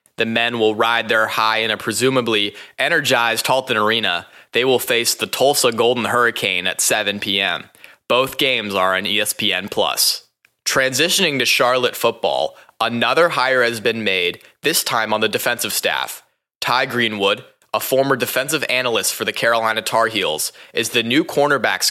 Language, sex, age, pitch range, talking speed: English, male, 20-39, 110-125 Hz, 155 wpm